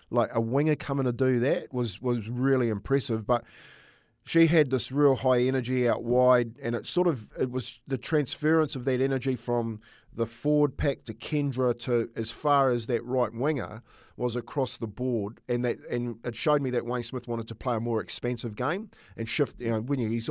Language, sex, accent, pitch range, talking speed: English, male, Australian, 115-140 Hz, 210 wpm